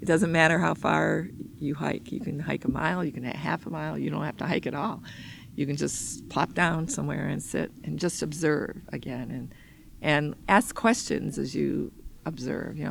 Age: 50-69